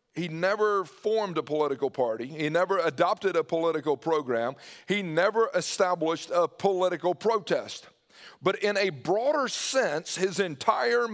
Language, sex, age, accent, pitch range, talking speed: English, male, 50-69, American, 160-220 Hz, 135 wpm